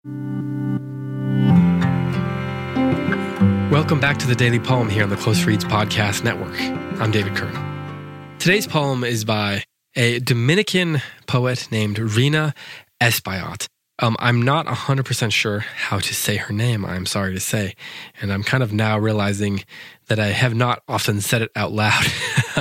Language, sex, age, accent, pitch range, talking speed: English, male, 20-39, American, 100-125 Hz, 145 wpm